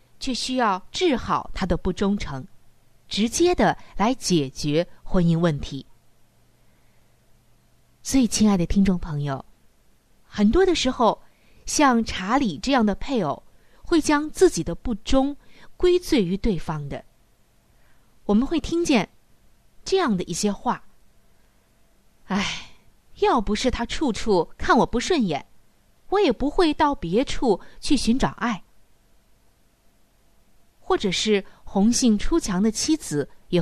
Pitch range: 175-270 Hz